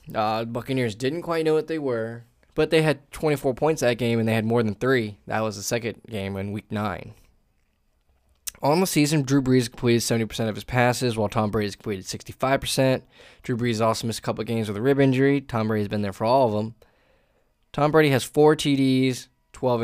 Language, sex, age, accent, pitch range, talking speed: English, male, 10-29, American, 110-140 Hz, 220 wpm